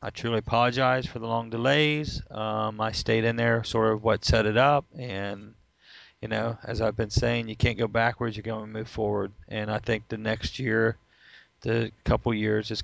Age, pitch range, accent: 40-59, 110-120 Hz, American